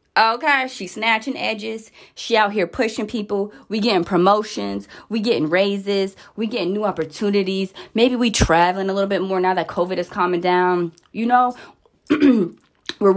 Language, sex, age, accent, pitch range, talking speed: English, female, 20-39, American, 185-255 Hz, 160 wpm